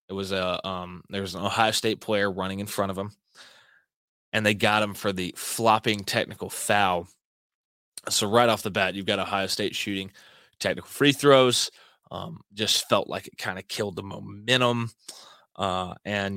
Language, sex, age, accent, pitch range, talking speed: English, male, 20-39, American, 95-115 Hz, 180 wpm